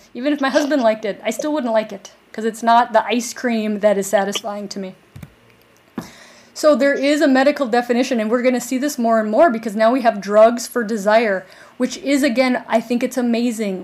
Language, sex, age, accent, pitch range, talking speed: English, female, 30-49, American, 200-255 Hz, 220 wpm